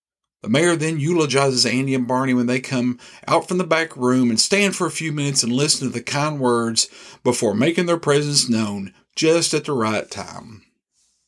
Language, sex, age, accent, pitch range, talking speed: English, male, 50-69, American, 115-175 Hz, 195 wpm